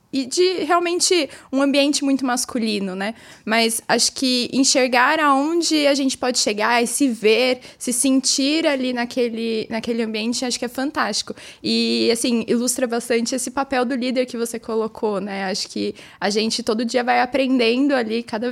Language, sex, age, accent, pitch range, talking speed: Portuguese, female, 20-39, Brazilian, 210-255 Hz, 170 wpm